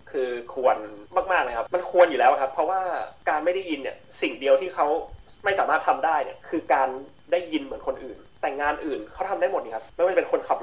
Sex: male